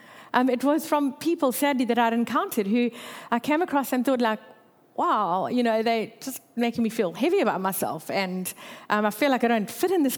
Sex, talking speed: female, 220 wpm